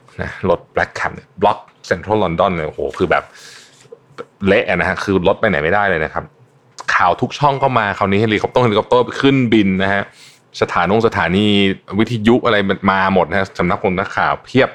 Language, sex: Thai, male